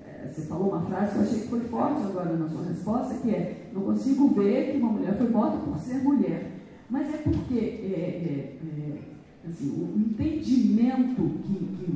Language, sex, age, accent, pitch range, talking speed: Portuguese, female, 40-59, Brazilian, 200-275 Hz, 175 wpm